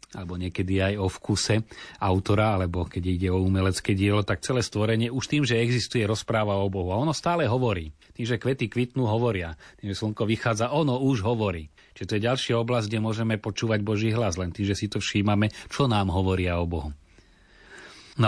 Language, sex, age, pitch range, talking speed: Slovak, male, 30-49, 90-110 Hz, 195 wpm